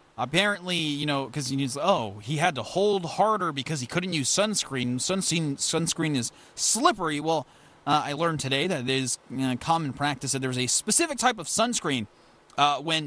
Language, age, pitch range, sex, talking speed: English, 30-49, 130-185 Hz, male, 190 wpm